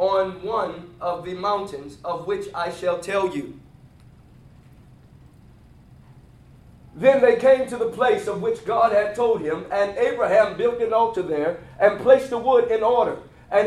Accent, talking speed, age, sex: American, 160 wpm, 30-49, male